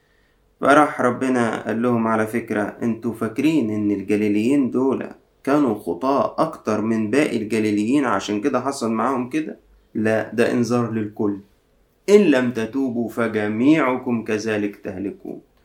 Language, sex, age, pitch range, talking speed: Arabic, male, 30-49, 105-125 Hz, 125 wpm